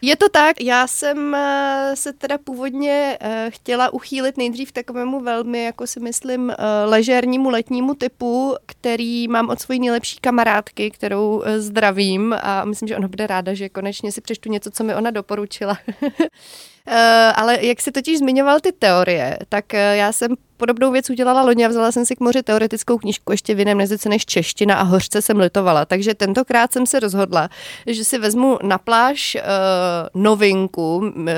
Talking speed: 160 wpm